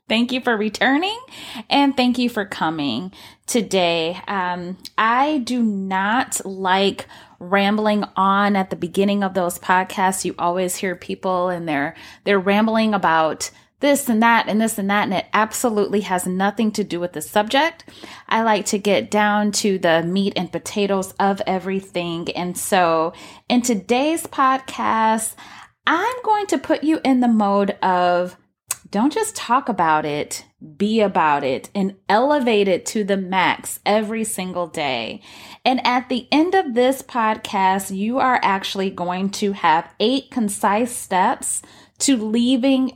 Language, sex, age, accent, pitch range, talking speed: English, female, 20-39, American, 185-245 Hz, 155 wpm